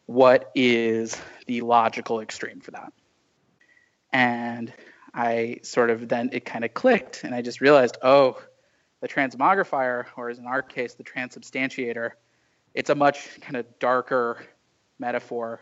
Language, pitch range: English, 120-145 Hz